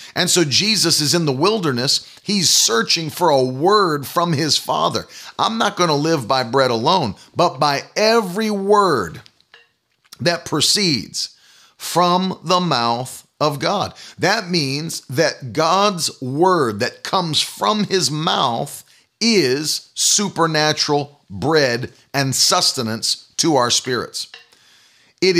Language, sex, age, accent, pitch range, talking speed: English, male, 40-59, American, 135-180 Hz, 125 wpm